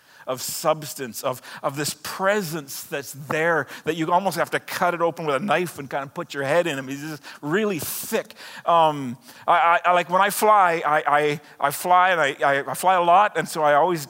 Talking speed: 235 wpm